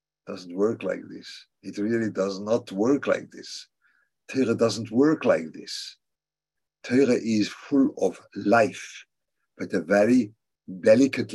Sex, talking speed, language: male, 130 wpm, English